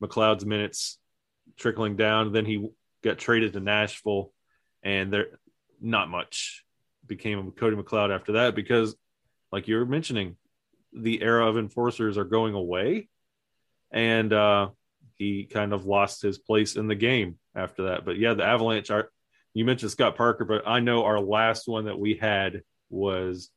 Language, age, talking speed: English, 30-49, 160 wpm